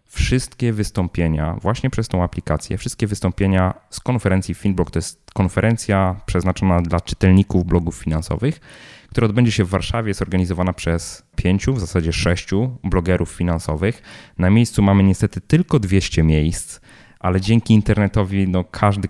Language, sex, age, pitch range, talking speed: Polish, male, 20-39, 85-100 Hz, 140 wpm